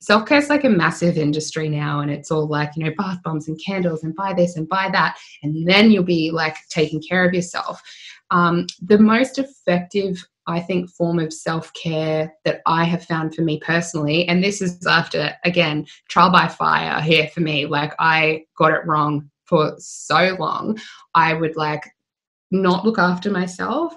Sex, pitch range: female, 160-220 Hz